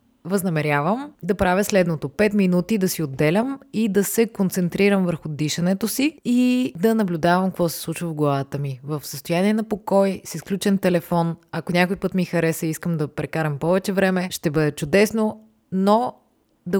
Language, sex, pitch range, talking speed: Bulgarian, female, 160-195 Hz, 170 wpm